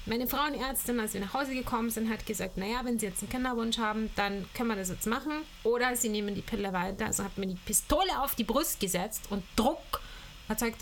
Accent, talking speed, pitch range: German, 225 wpm, 200-245 Hz